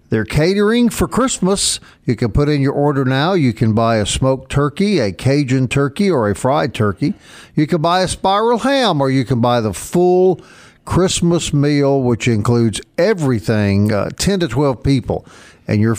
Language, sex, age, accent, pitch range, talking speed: English, male, 50-69, American, 120-170 Hz, 180 wpm